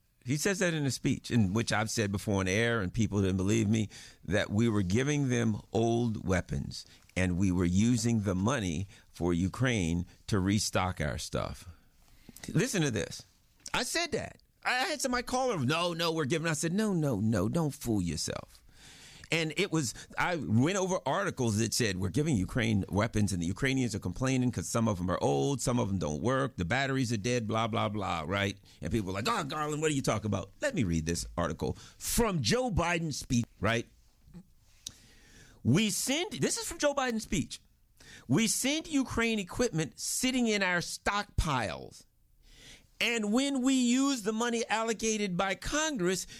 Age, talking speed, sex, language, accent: 50-69, 185 wpm, male, English, American